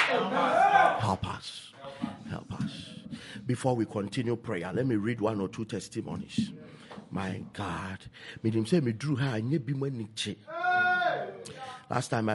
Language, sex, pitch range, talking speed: English, male, 100-120 Hz, 120 wpm